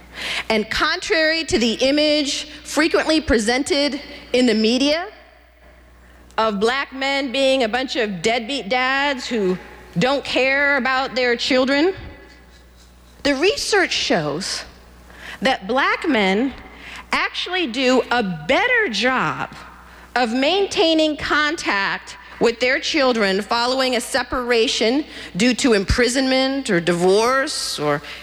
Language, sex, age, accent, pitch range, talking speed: English, female, 40-59, American, 220-285 Hz, 110 wpm